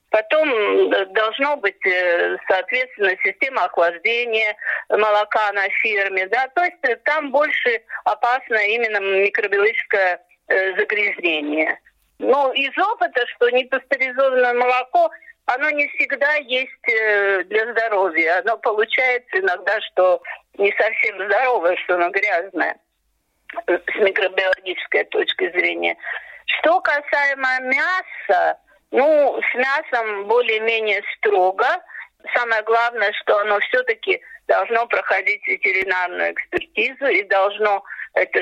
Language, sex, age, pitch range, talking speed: Russian, female, 50-69, 195-295 Hz, 100 wpm